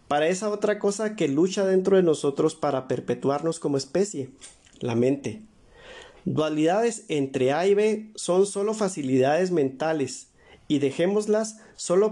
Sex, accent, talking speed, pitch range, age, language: male, Mexican, 135 wpm, 135-190 Hz, 40-59, Spanish